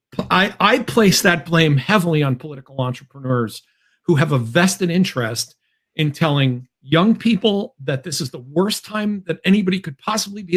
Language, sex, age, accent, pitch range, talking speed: English, male, 50-69, American, 135-200 Hz, 165 wpm